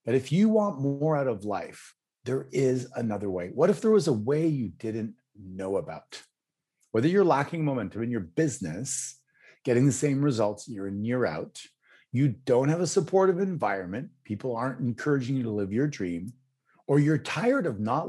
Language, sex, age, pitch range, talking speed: English, male, 40-59, 105-145 Hz, 185 wpm